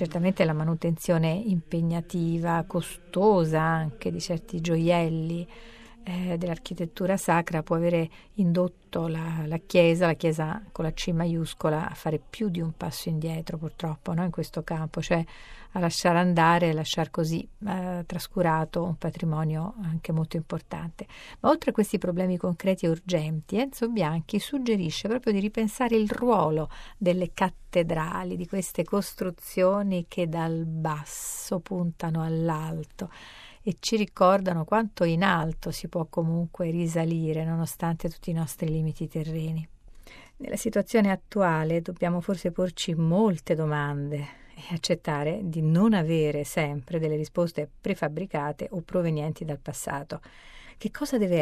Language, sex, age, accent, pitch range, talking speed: Italian, female, 40-59, native, 160-185 Hz, 135 wpm